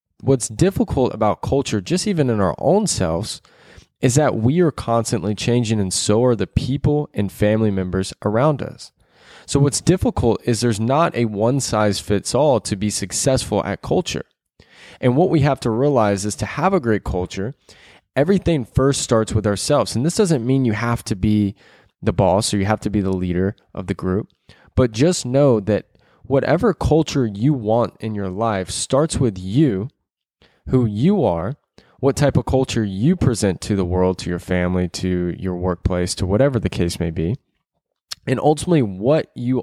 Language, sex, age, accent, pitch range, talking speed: English, male, 20-39, American, 100-135 Hz, 180 wpm